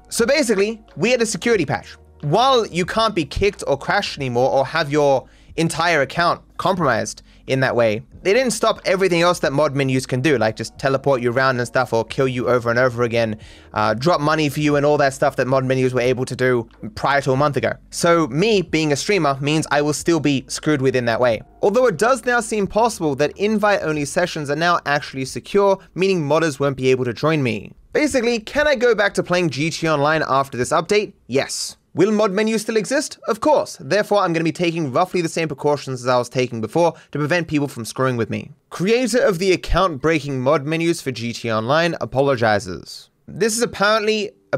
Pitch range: 130-185 Hz